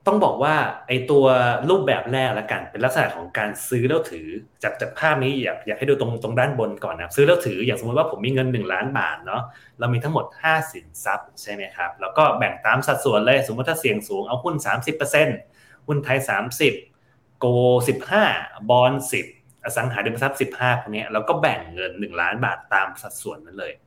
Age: 20-39